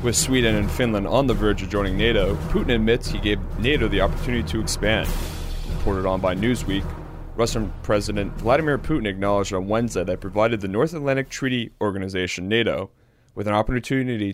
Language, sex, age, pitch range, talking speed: English, male, 30-49, 100-125 Hz, 170 wpm